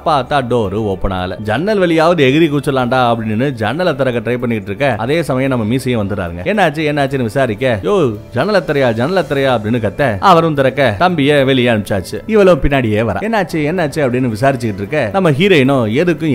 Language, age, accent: Tamil, 30-49, native